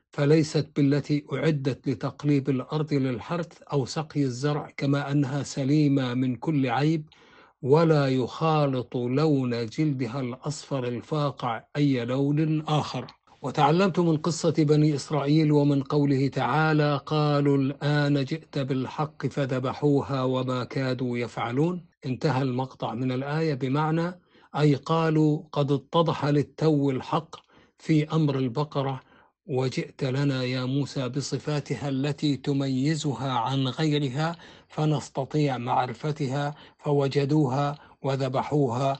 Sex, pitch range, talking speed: male, 135-155 Hz, 105 wpm